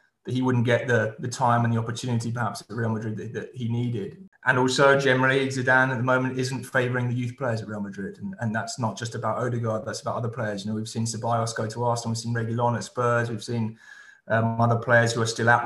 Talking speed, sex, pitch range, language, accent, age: 255 wpm, male, 110-125 Hz, English, British, 20-39